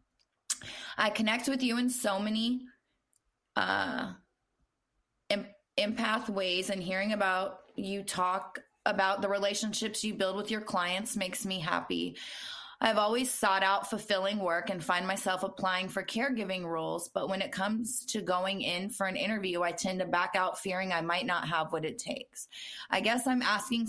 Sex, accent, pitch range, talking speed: female, American, 180-220 Hz, 165 wpm